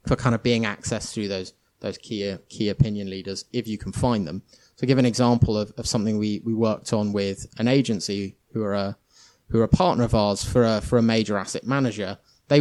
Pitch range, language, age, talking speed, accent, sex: 105-125 Hz, English, 20-39, 235 wpm, British, male